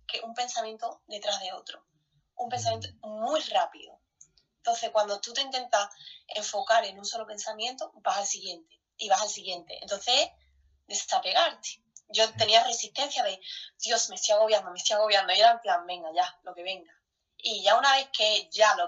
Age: 20-39